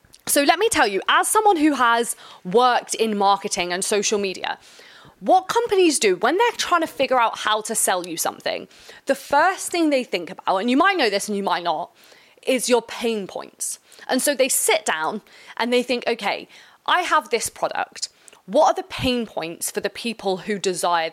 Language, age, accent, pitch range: English, 20-39, British, 205-280 Hz